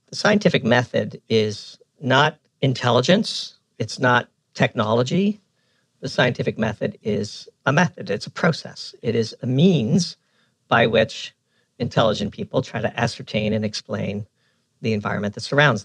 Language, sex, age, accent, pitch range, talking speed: English, male, 50-69, American, 115-145 Hz, 135 wpm